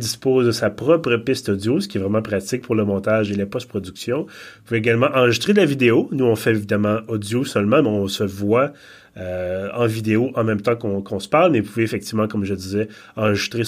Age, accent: 30-49, Canadian